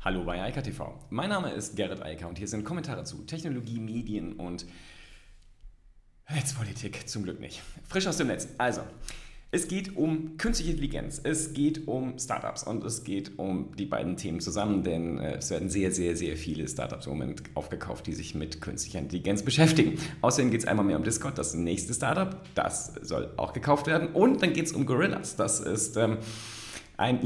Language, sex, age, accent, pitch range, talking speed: German, male, 30-49, German, 85-140 Hz, 185 wpm